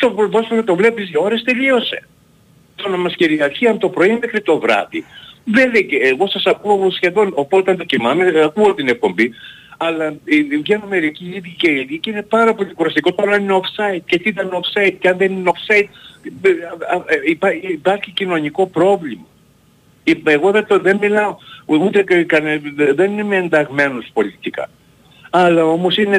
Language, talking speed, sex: Greek, 165 wpm, male